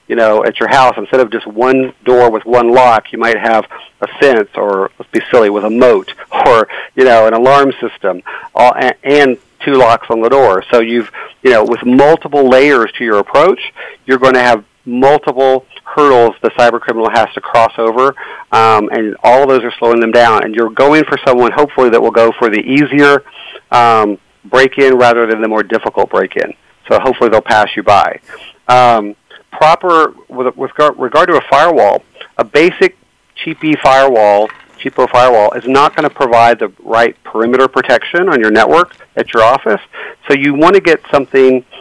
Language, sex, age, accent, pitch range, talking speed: English, male, 40-59, American, 115-140 Hz, 185 wpm